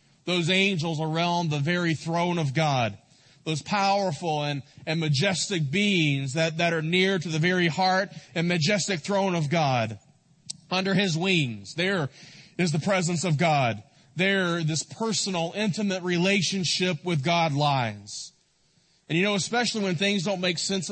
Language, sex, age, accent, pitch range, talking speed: English, male, 30-49, American, 155-190 Hz, 150 wpm